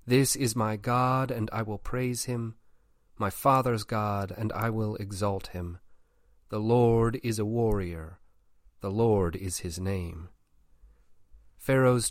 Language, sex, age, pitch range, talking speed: English, male, 40-59, 95-125 Hz, 140 wpm